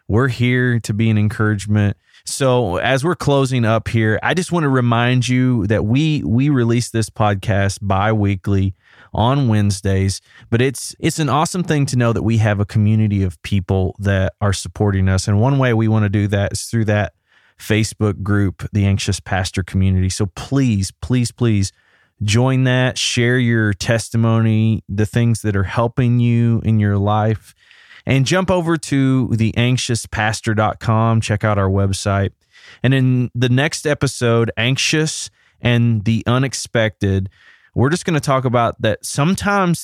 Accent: American